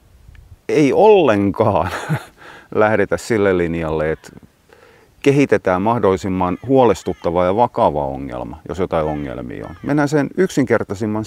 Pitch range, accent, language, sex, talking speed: 90-125 Hz, native, Finnish, male, 100 wpm